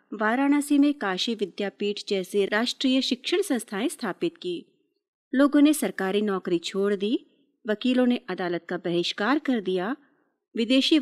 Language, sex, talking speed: Hindi, female, 130 wpm